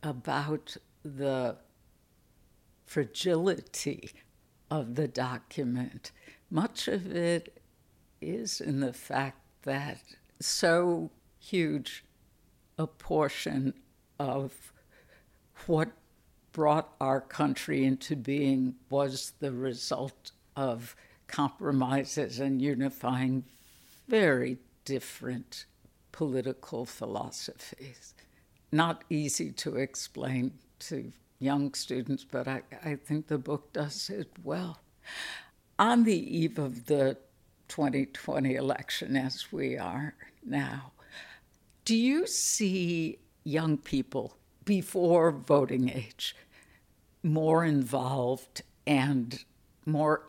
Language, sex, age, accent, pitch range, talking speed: English, female, 60-79, American, 130-155 Hz, 90 wpm